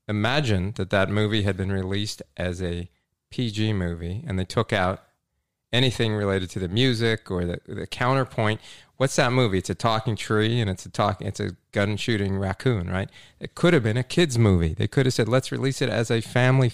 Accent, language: American, English